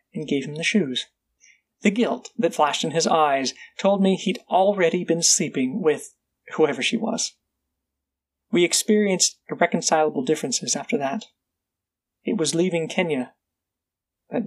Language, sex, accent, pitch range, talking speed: English, male, American, 145-205 Hz, 135 wpm